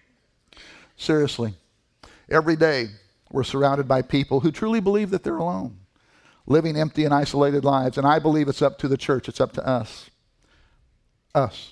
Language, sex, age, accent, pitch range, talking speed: English, male, 50-69, American, 155-210 Hz, 160 wpm